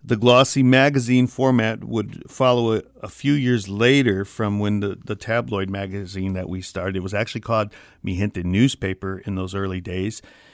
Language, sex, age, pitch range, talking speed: English, male, 50-69, 100-125 Hz, 175 wpm